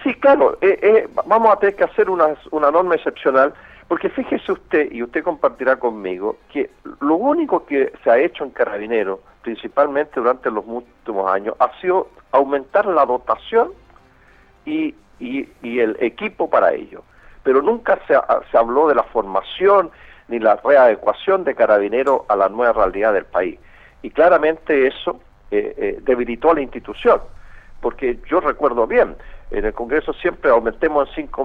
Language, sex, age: Spanish, male, 50-69